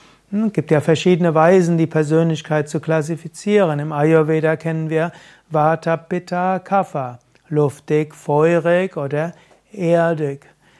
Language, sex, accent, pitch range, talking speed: German, male, German, 155-180 Hz, 110 wpm